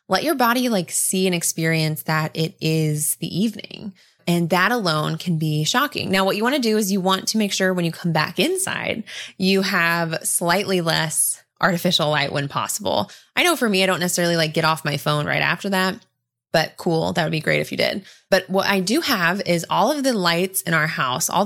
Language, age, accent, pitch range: English, 20-39, American, 160-200 Hz